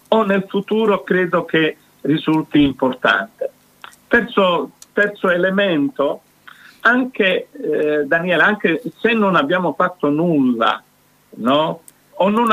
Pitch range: 140-190 Hz